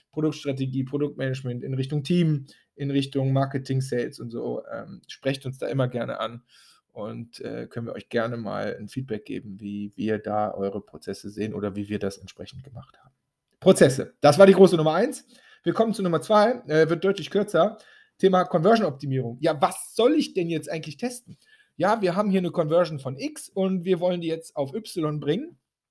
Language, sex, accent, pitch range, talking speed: German, male, German, 130-190 Hz, 190 wpm